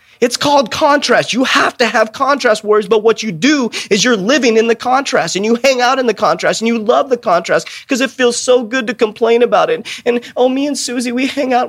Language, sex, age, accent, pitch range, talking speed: English, male, 30-49, American, 155-250 Hz, 245 wpm